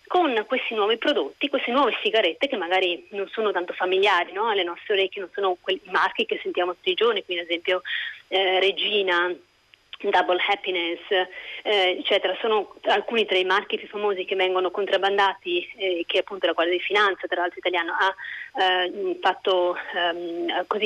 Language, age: Italian, 30-49